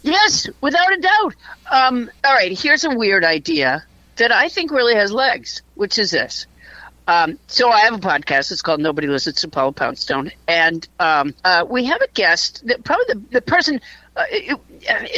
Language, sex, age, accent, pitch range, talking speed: English, female, 50-69, American, 190-280 Hz, 180 wpm